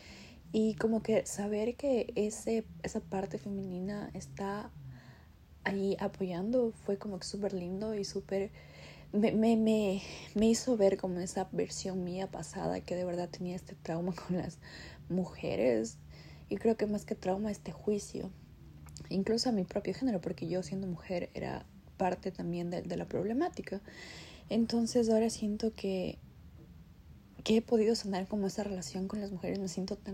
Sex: female